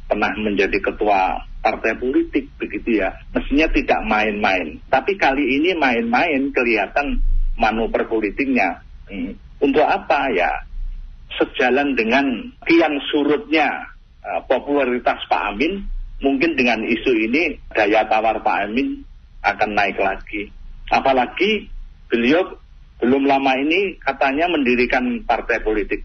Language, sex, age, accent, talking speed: Indonesian, male, 40-59, native, 110 wpm